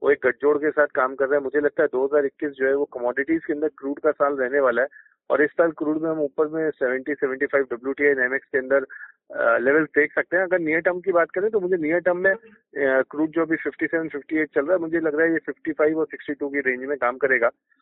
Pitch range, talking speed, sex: 140-175 Hz, 245 wpm, male